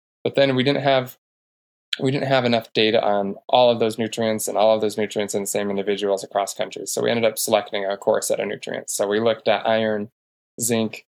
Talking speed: 215 wpm